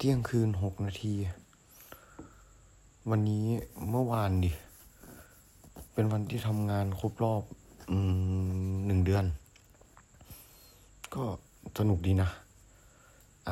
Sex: male